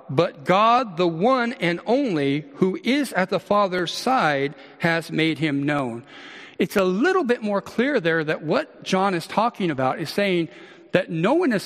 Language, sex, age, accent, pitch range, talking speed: English, male, 50-69, American, 155-205 Hz, 180 wpm